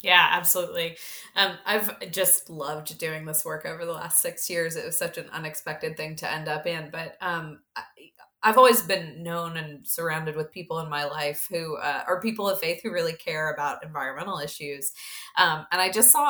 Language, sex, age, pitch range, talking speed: English, female, 20-39, 155-190 Hz, 200 wpm